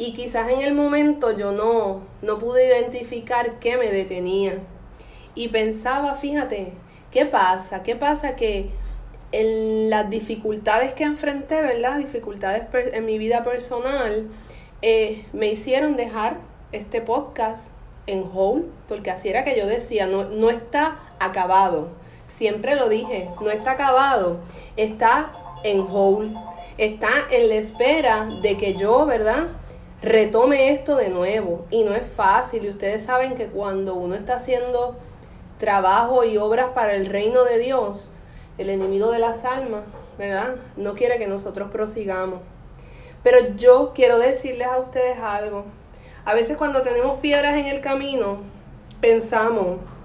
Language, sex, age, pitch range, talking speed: English, female, 30-49, 200-255 Hz, 140 wpm